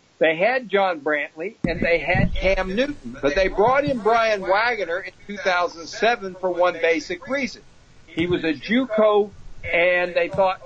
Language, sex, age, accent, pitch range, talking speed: English, male, 60-79, American, 170-220 Hz, 160 wpm